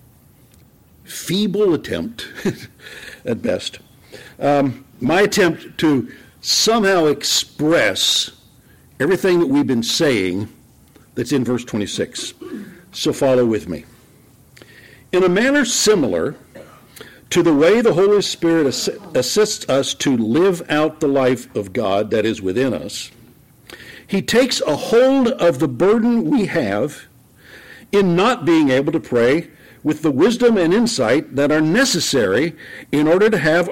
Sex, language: male, English